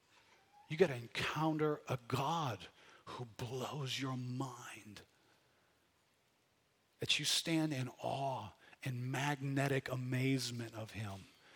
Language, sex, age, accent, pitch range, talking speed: English, male, 50-69, American, 120-150 Hz, 105 wpm